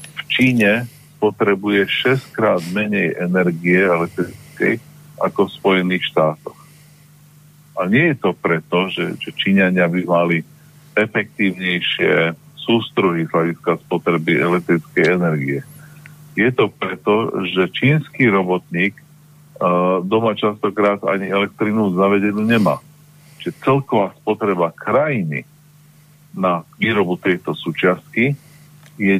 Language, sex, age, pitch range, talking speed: Slovak, male, 50-69, 95-150 Hz, 95 wpm